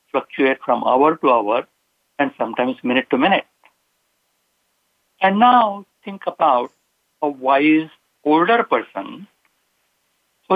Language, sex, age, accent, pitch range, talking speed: English, male, 60-79, Indian, 140-200 Hz, 110 wpm